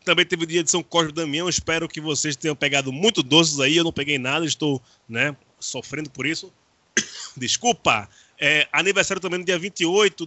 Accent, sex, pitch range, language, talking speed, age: Brazilian, male, 145-190 Hz, Portuguese, 195 wpm, 20-39